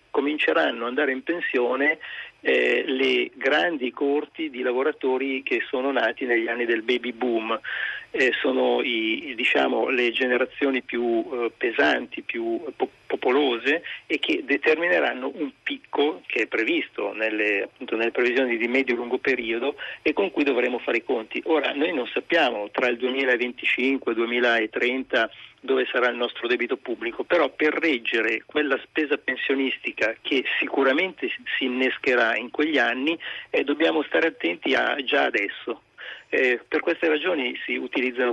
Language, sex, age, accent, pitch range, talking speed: Italian, male, 40-59, native, 120-170 Hz, 145 wpm